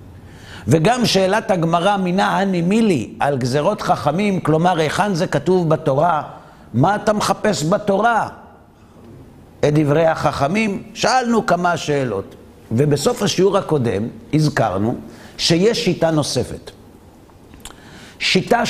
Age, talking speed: 50-69, 100 wpm